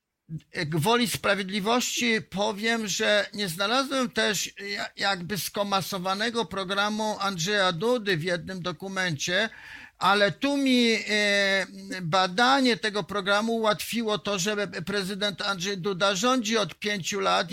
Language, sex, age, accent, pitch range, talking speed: Polish, male, 50-69, native, 175-205 Hz, 105 wpm